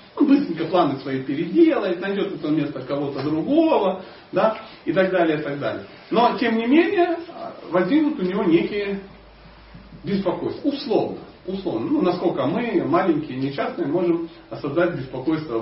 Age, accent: 40-59, native